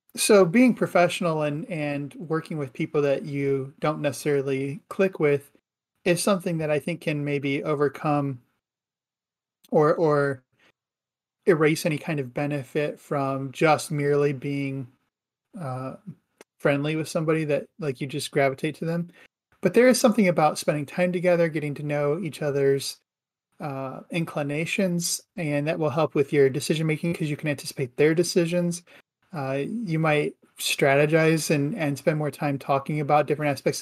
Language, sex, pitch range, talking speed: English, male, 140-160 Hz, 155 wpm